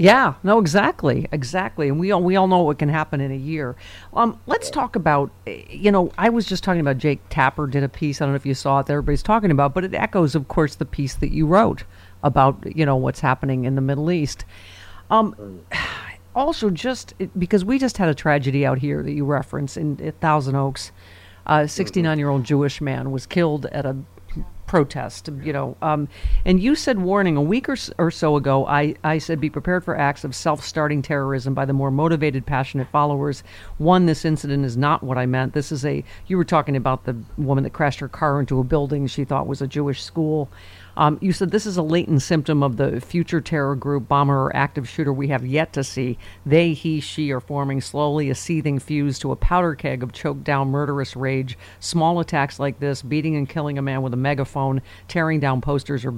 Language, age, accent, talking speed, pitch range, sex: English, 50-69, American, 215 wpm, 135-155 Hz, female